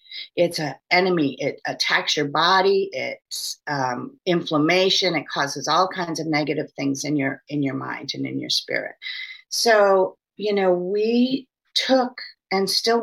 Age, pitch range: 40-59, 160-195 Hz